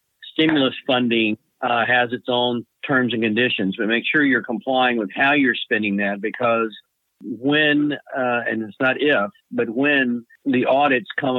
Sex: male